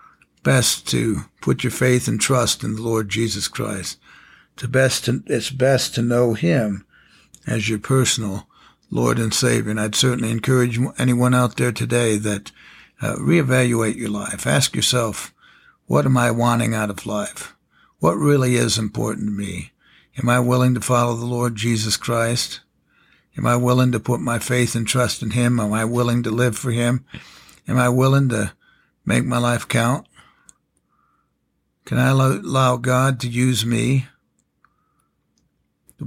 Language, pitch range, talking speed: English, 110-130 Hz, 165 wpm